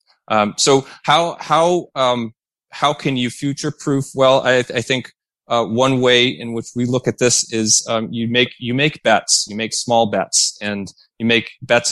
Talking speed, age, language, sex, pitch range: 195 wpm, 30-49, English, male, 105-125 Hz